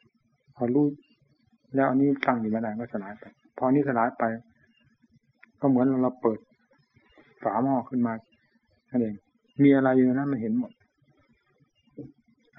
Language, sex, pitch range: Thai, male, 120-140 Hz